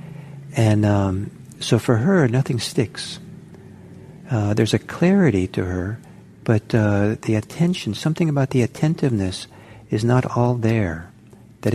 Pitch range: 100-130 Hz